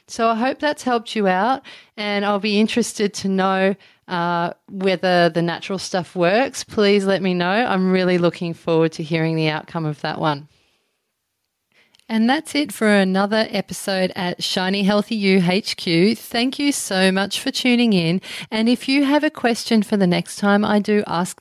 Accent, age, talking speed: Australian, 30-49, 180 wpm